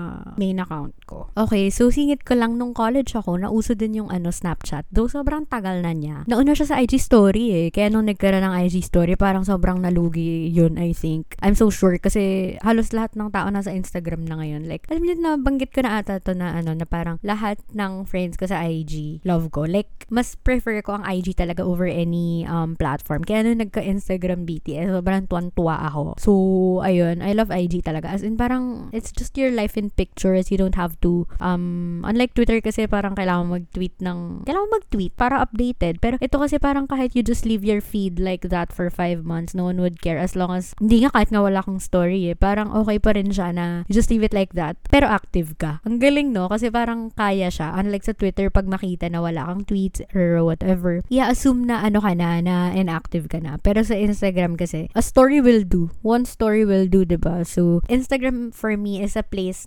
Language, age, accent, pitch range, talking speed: English, 20-39, Filipino, 175-225 Hz, 215 wpm